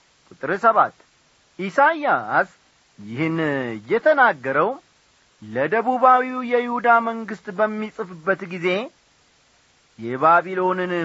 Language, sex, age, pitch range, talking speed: Amharic, male, 40-59, 140-190 Hz, 55 wpm